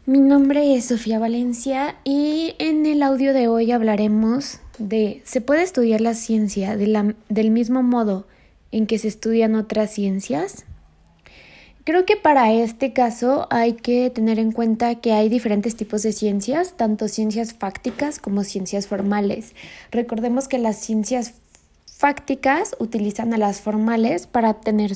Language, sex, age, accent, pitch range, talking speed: English, female, 20-39, Mexican, 210-255 Hz, 145 wpm